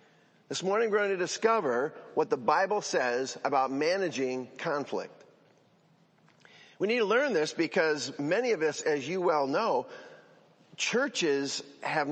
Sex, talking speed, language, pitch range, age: male, 140 wpm, English, 140-200 Hz, 50-69